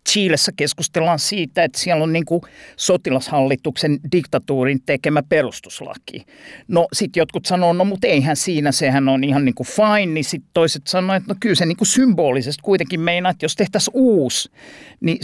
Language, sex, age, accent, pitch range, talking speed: Finnish, male, 50-69, native, 130-170 Hz, 165 wpm